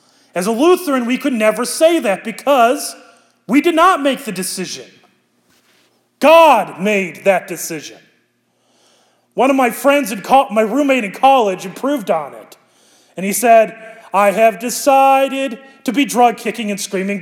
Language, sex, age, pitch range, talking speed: English, male, 30-49, 220-300 Hz, 150 wpm